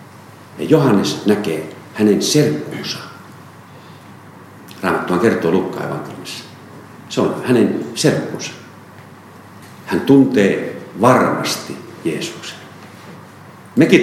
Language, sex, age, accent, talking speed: Finnish, male, 50-69, native, 75 wpm